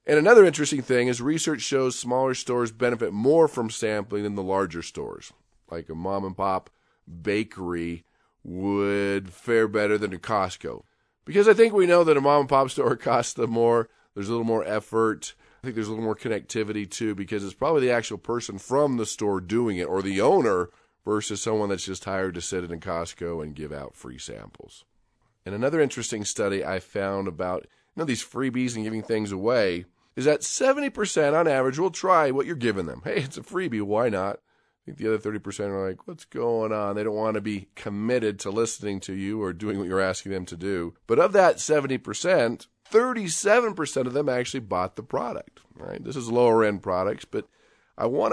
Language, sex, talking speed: English, male, 195 wpm